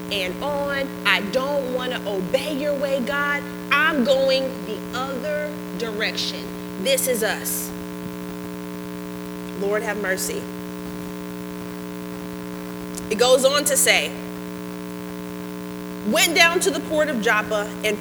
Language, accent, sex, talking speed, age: English, American, female, 115 wpm, 30-49